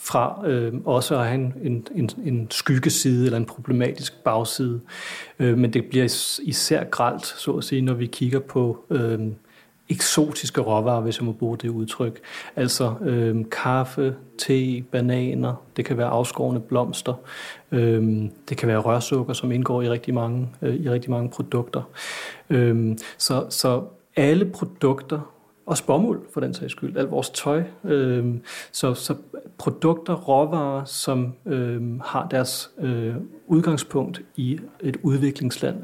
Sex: male